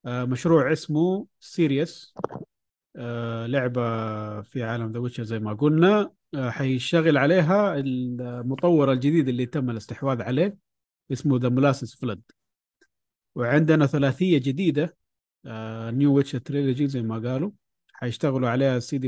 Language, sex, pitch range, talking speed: Arabic, male, 120-150 Hz, 120 wpm